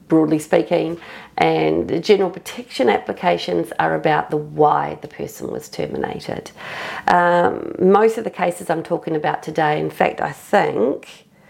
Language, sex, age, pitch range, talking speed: English, female, 40-59, 160-215 Hz, 145 wpm